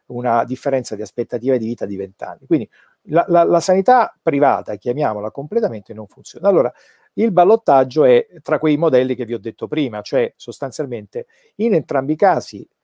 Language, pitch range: Italian, 120-170 Hz